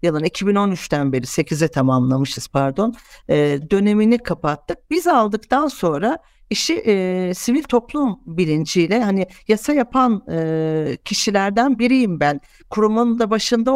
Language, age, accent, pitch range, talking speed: Turkish, 60-79, native, 190-245 Hz, 115 wpm